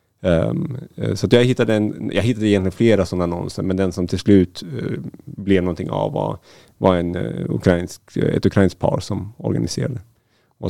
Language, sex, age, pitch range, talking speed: Swedish, male, 30-49, 90-105 Hz, 175 wpm